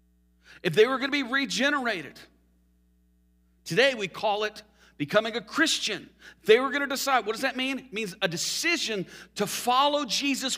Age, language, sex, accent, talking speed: 40-59, English, male, American, 170 wpm